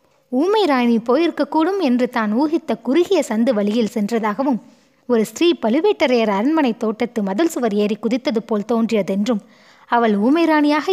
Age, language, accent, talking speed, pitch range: 20-39, Tamil, native, 130 wpm, 215-275 Hz